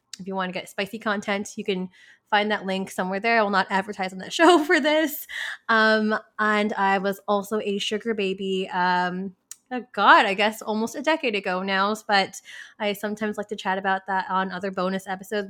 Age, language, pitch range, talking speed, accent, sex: 20-39, English, 190-230 Hz, 205 wpm, American, female